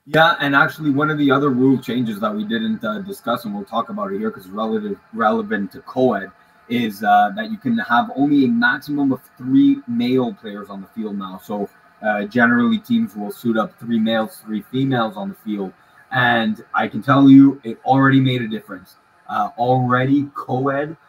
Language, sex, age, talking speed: English, male, 20-39, 195 wpm